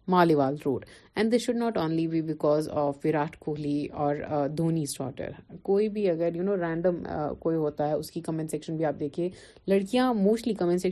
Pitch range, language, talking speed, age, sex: 165-205 Hz, Urdu, 115 wpm, 30-49, female